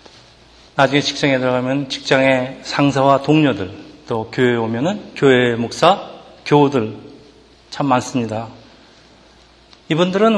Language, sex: Korean, male